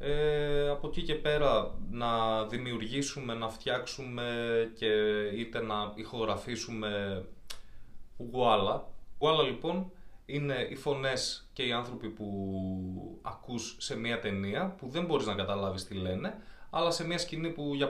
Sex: male